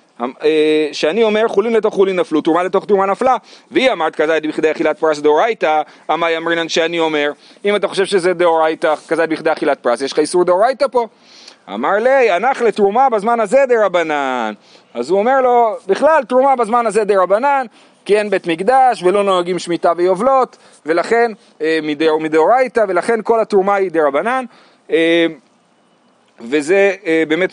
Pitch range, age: 160-230 Hz, 40-59